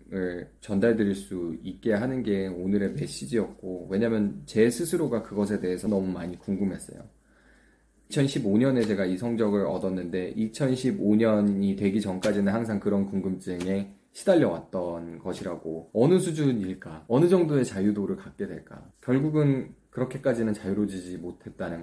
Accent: native